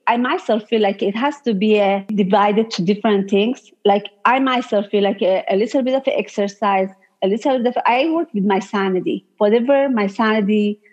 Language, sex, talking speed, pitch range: English, female, 200 wpm, 200-245 Hz